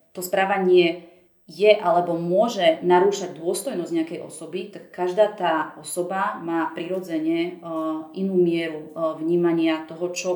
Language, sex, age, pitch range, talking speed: Slovak, female, 30-49, 170-195 Hz, 115 wpm